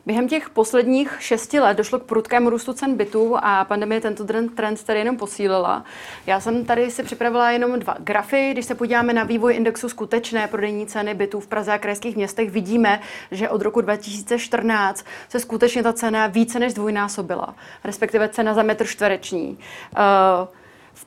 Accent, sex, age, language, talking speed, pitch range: native, female, 30-49, Czech, 170 wpm, 205-230 Hz